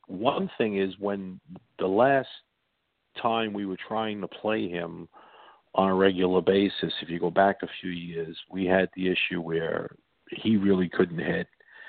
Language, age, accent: English, 50-69, American